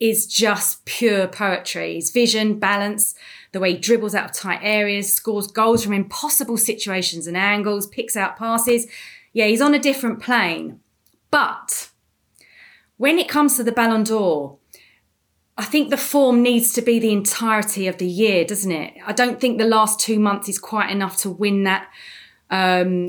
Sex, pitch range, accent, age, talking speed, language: female, 190-240 Hz, British, 20-39, 175 wpm, English